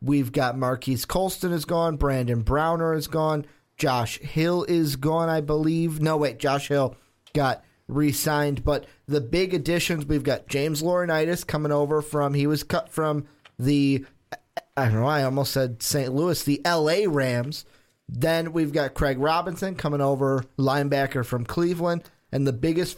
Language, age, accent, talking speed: English, 30-49, American, 160 wpm